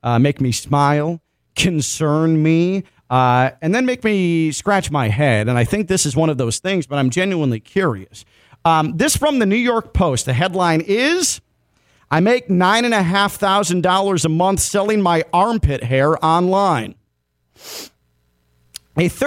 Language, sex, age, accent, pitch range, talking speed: English, male, 40-59, American, 145-205 Hz, 150 wpm